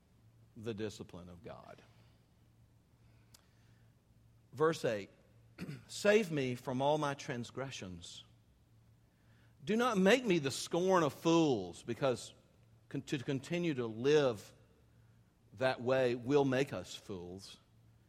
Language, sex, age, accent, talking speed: English, male, 50-69, American, 105 wpm